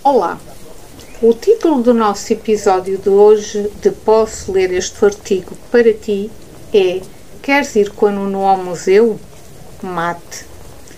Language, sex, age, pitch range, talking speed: Portuguese, female, 50-69, 195-245 Hz, 130 wpm